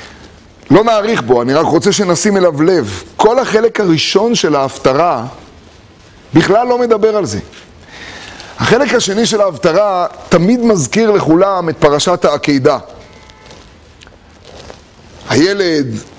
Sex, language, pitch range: male, Hebrew, 160-210 Hz